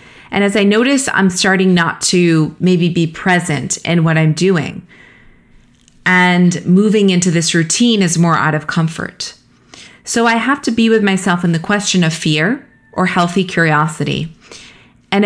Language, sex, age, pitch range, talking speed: English, female, 30-49, 160-200 Hz, 160 wpm